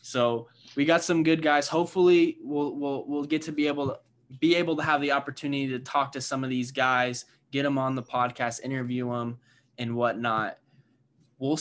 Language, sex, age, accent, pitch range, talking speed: English, male, 10-29, American, 125-145 Hz, 195 wpm